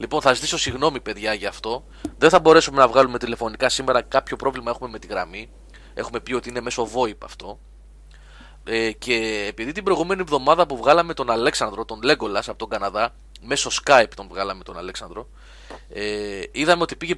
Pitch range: 110-155 Hz